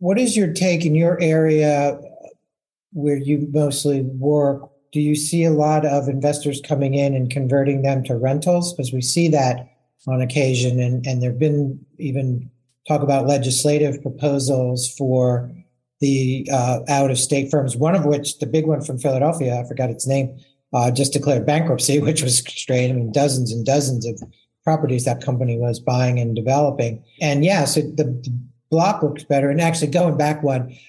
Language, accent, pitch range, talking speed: English, American, 130-150 Hz, 180 wpm